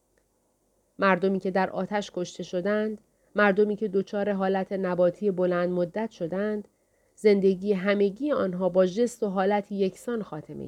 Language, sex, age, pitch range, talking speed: Persian, female, 30-49, 175-205 Hz, 130 wpm